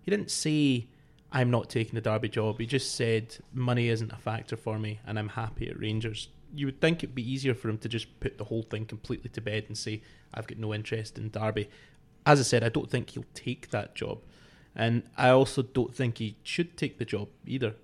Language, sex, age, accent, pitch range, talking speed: English, male, 20-39, British, 110-130 Hz, 230 wpm